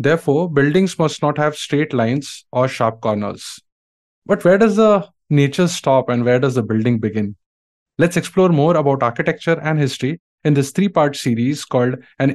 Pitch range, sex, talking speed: 125-155 Hz, male, 170 wpm